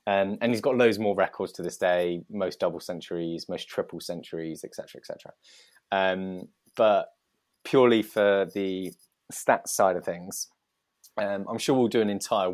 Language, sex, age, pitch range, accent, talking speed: English, male, 20-39, 90-105 Hz, British, 170 wpm